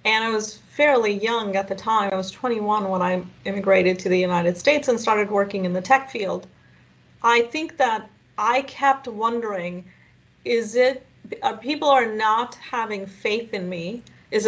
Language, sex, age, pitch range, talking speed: English, female, 30-49, 195-255 Hz, 175 wpm